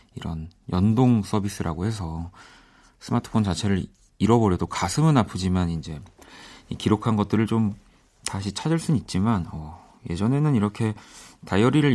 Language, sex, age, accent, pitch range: Korean, male, 40-59, native, 95-120 Hz